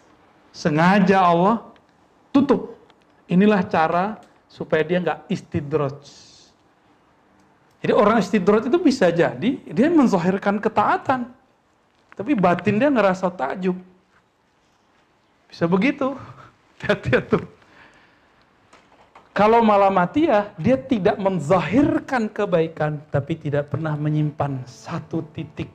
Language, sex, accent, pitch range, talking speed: Indonesian, male, native, 150-210 Hz, 95 wpm